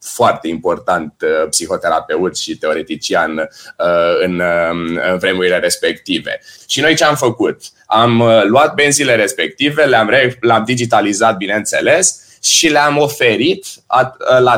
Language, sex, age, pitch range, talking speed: Romanian, male, 20-39, 105-135 Hz, 125 wpm